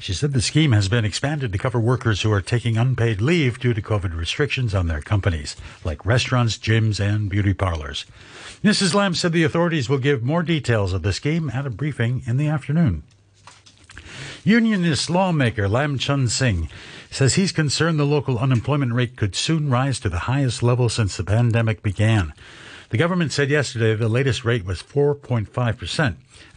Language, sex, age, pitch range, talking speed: English, male, 60-79, 105-140 Hz, 175 wpm